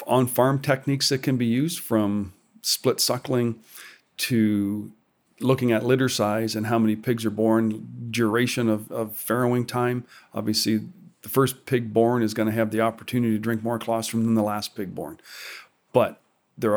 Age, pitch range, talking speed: 40-59, 110-120 Hz, 170 wpm